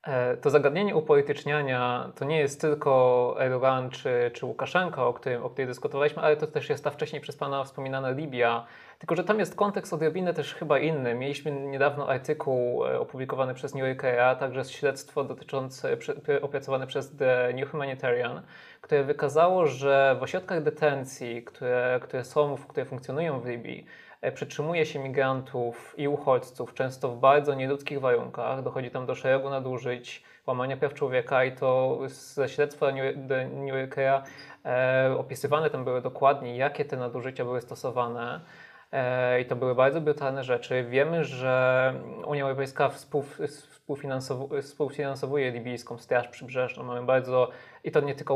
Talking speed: 145 wpm